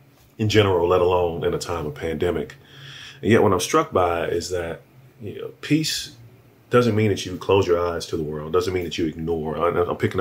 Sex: male